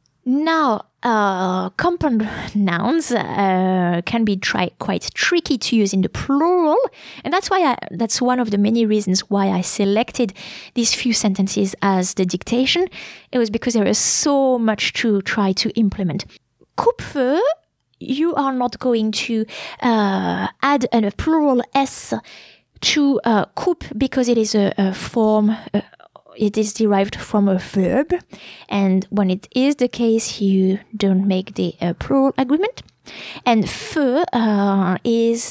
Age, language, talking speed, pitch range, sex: 20-39, English, 150 wpm, 200-265 Hz, female